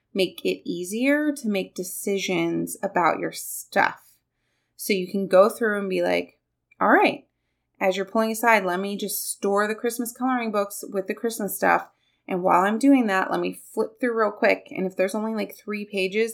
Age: 20-39